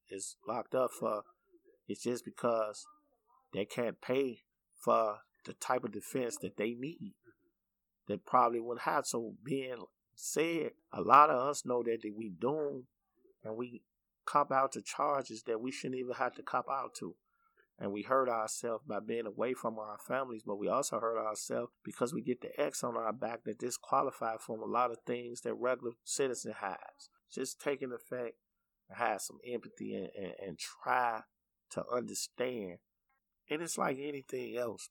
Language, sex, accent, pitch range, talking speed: English, male, American, 115-145 Hz, 170 wpm